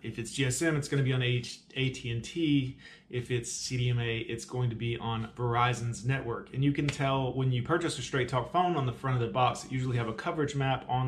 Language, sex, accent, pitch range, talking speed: English, male, American, 120-135 Hz, 235 wpm